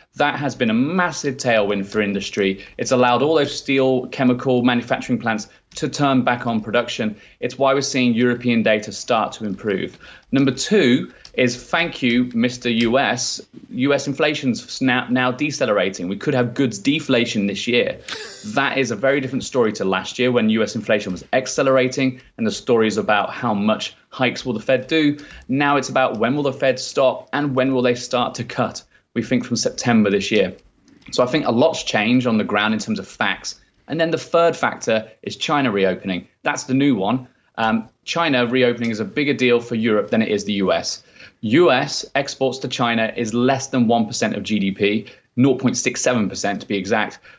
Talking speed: 190 wpm